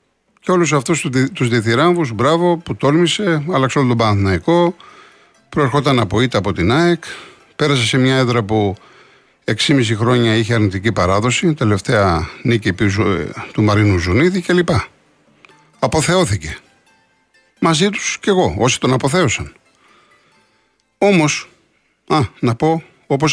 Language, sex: Greek, male